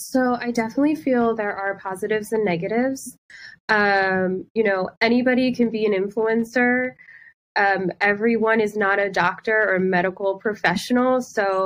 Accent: American